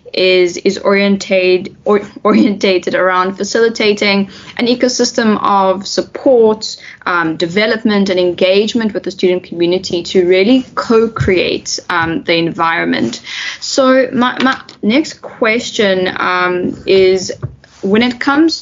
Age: 10-29